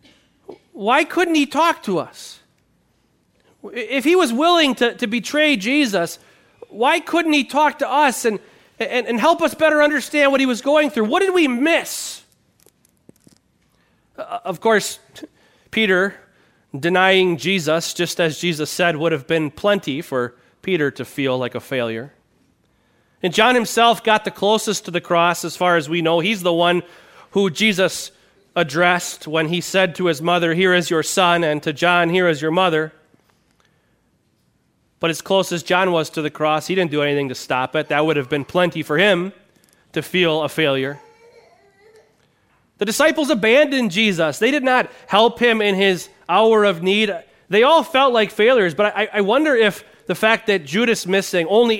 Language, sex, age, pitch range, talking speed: English, male, 30-49, 165-240 Hz, 175 wpm